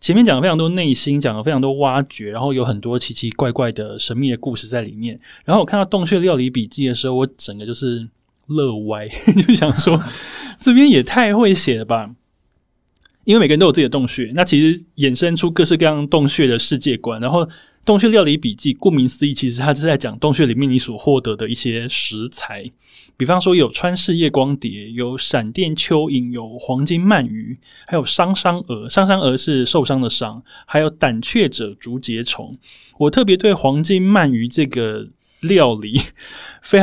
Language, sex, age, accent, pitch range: Chinese, male, 20-39, native, 125-175 Hz